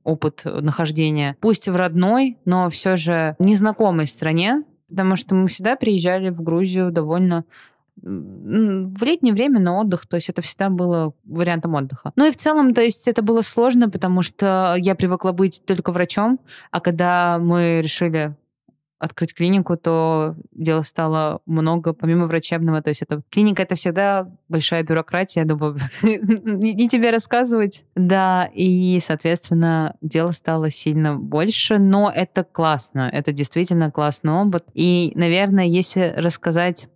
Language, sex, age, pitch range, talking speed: Russian, female, 20-39, 165-195 Hz, 145 wpm